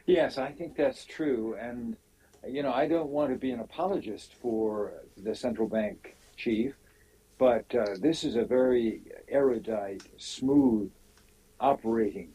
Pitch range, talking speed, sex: 115-130 Hz, 140 wpm, male